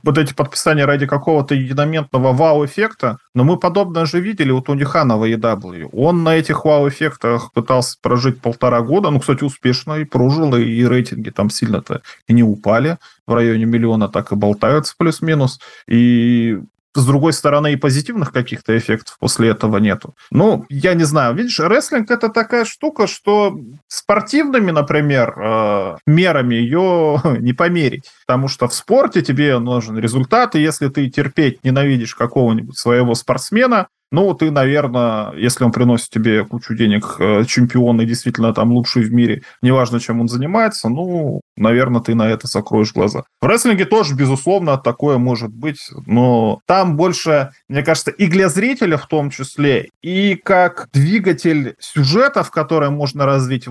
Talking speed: 155 wpm